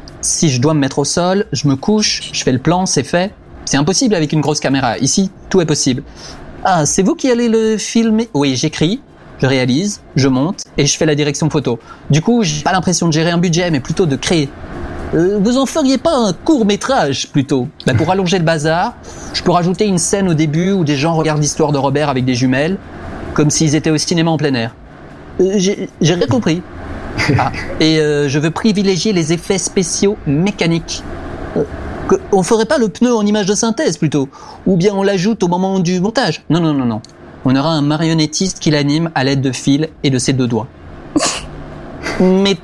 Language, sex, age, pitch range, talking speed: French, male, 30-49, 140-200 Hz, 215 wpm